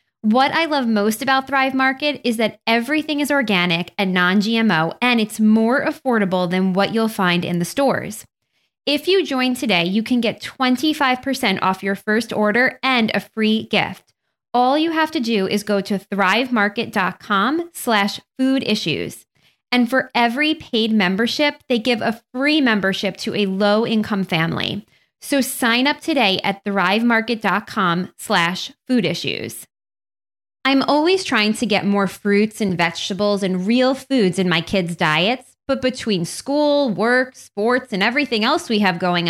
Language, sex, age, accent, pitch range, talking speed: English, female, 20-39, American, 200-265 Hz, 155 wpm